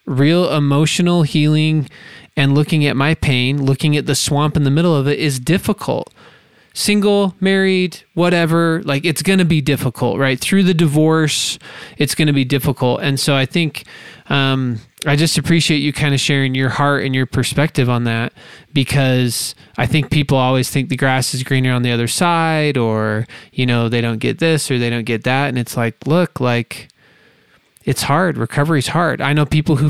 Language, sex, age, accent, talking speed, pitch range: English, male, 20-39, American, 195 wpm, 130-155 Hz